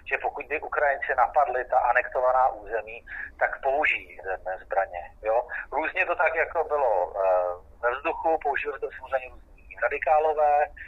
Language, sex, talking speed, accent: Czech, male, 140 wpm, native